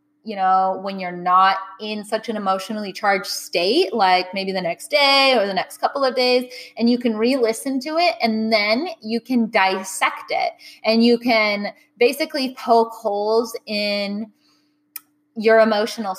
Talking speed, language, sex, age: 165 wpm, English, female, 20-39